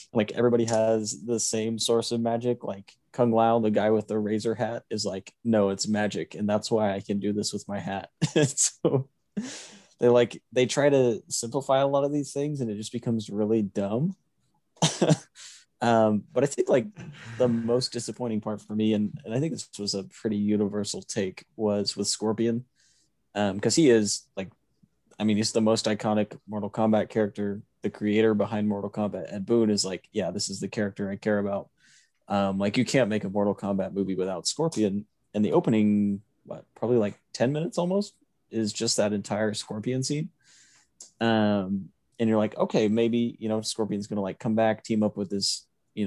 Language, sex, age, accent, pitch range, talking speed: English, male, 20-39, American, 105-120 Hz, 195 wpm